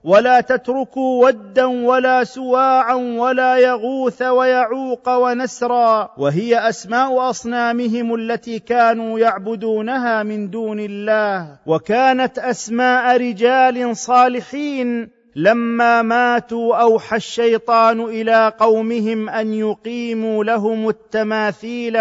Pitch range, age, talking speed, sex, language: 220-250 Hz, 40-59, 85 wpm, male, Arabic